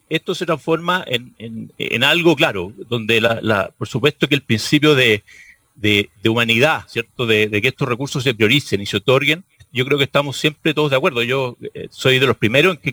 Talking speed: 215 wpm